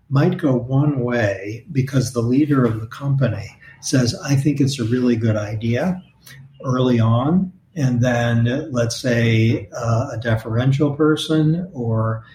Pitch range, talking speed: 115-140 Hz, 140 wpm